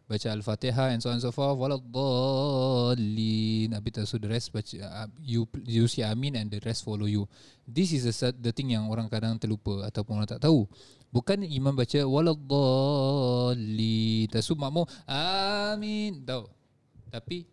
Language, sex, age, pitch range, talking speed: Malay, male, 20-39, 110-135 Hz, 160 wpm